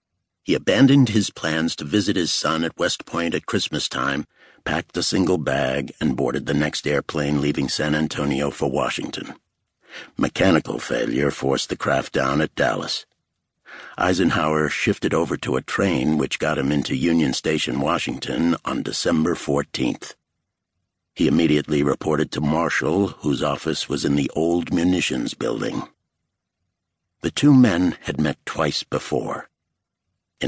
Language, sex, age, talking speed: English, male, 60-79, 145 wpm